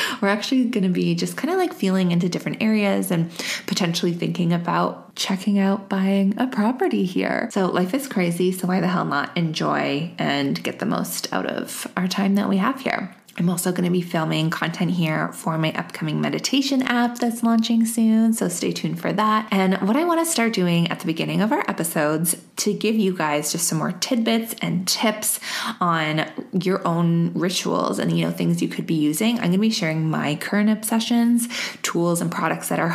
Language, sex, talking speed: English, female, 210 wpm